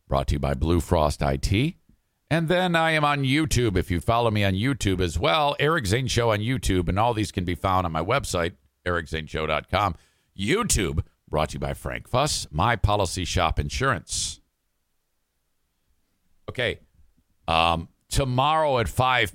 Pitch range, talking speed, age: 75-115 Hz, 160 wpm, 50-69